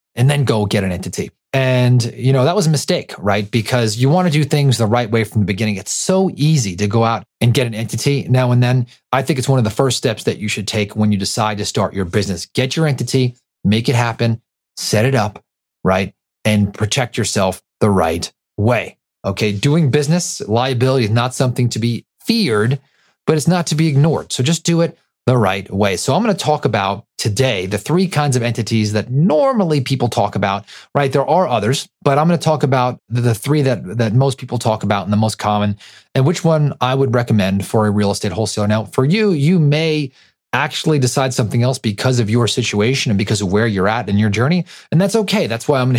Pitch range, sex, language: 105-145 Hz, male, English